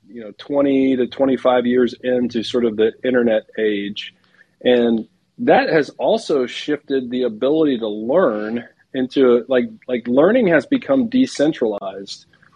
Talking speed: 135 wpm